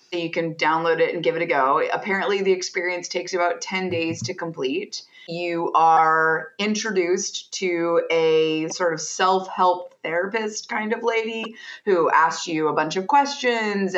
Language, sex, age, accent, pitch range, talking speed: English, female, 30-49, American, 160-190 Hz, 160 wpm